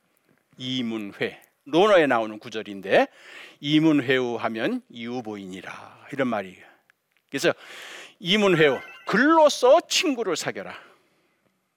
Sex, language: male, Korean